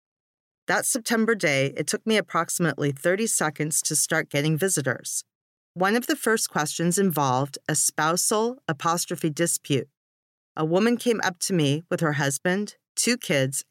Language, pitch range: English, 145-195 Hz